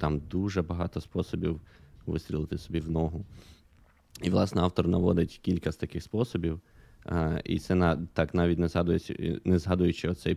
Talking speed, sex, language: 145 wpm, male, Ukrainian